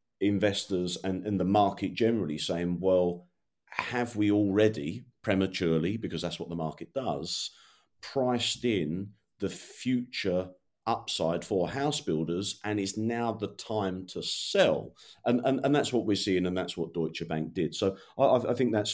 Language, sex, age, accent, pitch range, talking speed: English, male, 40-59, British, 90-110 Hz, 160 wpm